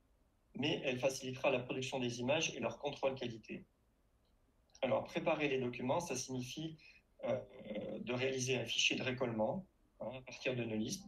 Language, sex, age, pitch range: French, male, 40-59, 115-140 Hz